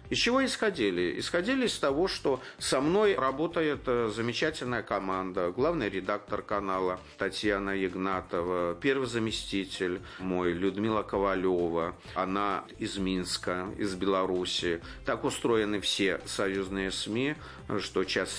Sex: male